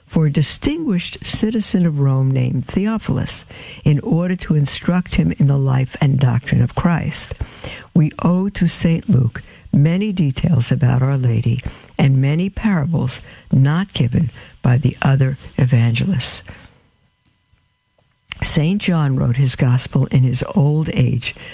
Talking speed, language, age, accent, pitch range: 135 wpm, English, 60-79, American, 130-170 Hz